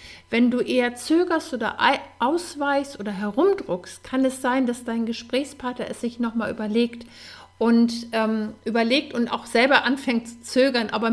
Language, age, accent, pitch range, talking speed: German, 50-69, German, 195-255 Hz, 150 wpm